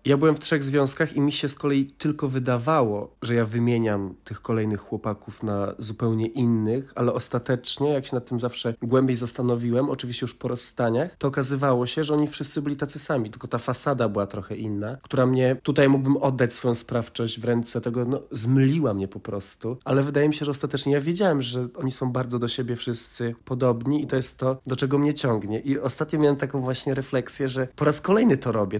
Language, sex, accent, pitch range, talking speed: Polish, male, native, 120-145 Hz, 210 wpm